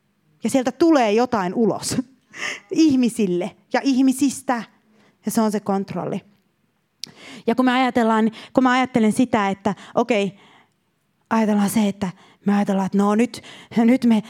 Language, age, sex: Finnish, 30-49, female